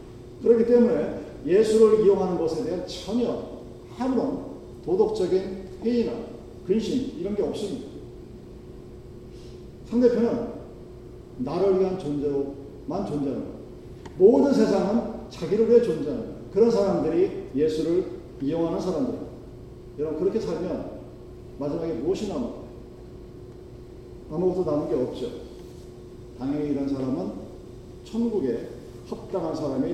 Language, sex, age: Korean, male, 40-59